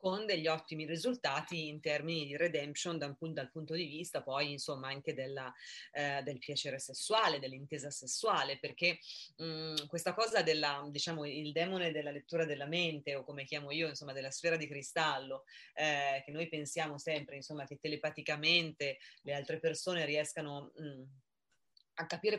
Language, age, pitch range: Italian, 30-49, 145-170 Hz